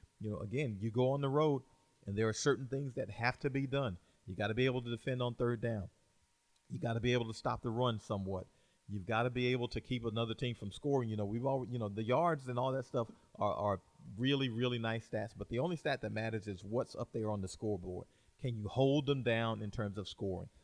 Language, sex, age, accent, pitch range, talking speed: English, male, 40-59, American, 110-130 Hz, 260 wpm